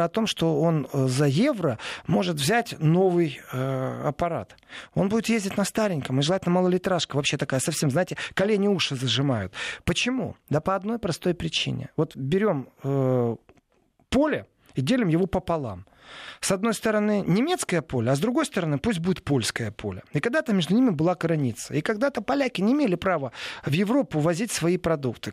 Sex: male